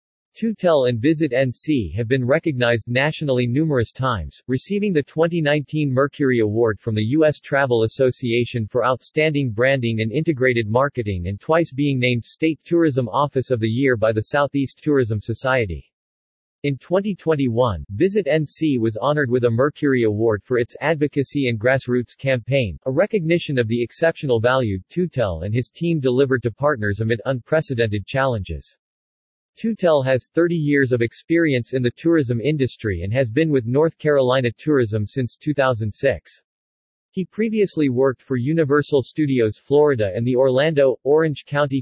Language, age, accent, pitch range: English, 40-59, American, 115-150 Hz